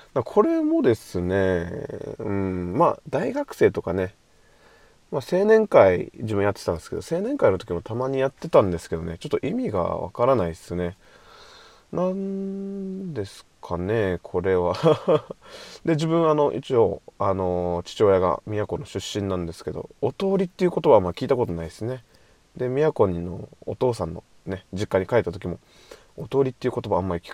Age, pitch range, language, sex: 20-39, 95-140 Hz, Japanese, male